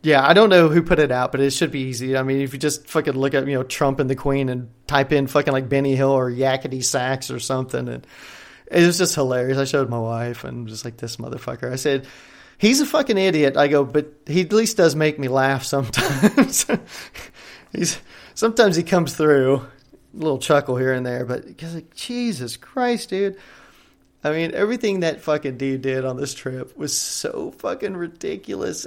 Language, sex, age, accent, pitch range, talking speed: English, male, 30-49, American, 130-160 Hz, 210 wpm